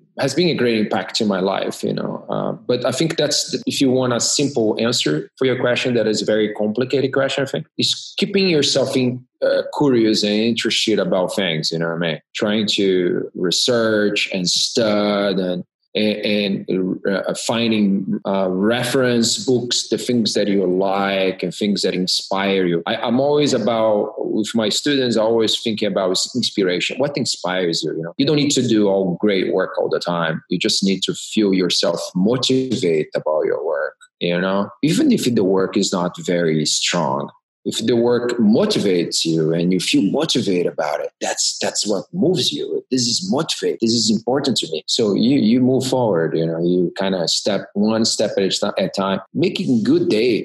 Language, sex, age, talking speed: English, male, 30-49, 190 wpm